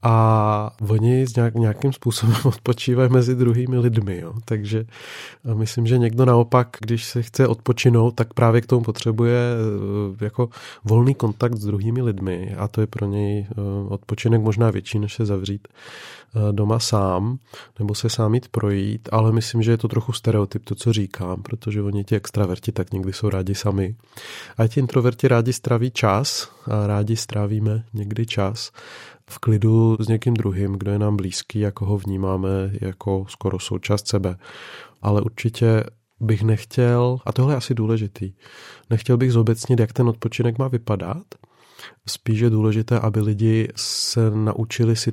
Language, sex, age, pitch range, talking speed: Czech, male, 30-49, 105-120 Hz, 155 wpm